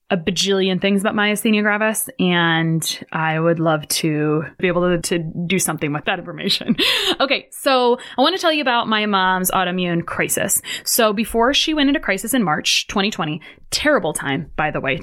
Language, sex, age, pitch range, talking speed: English, female, 20-39, 180-215 Hz, 185 wpm